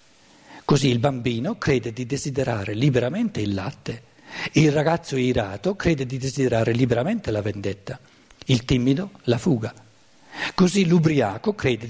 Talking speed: 125 wpm